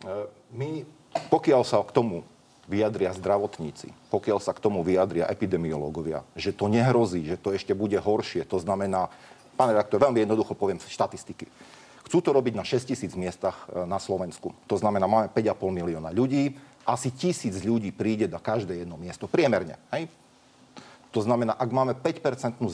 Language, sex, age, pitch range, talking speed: Slovak, male, 40-59, 95-130 Hz, 155 wpm